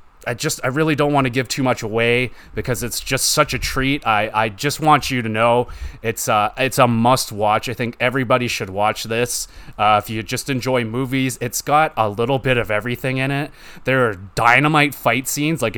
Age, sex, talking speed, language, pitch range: 30-49, male, 215 wpm, English, 120-155 Hz